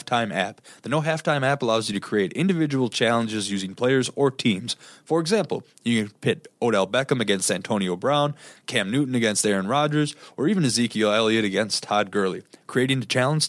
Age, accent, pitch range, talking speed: 20-39, American, 110-150 Hz, 175 wpm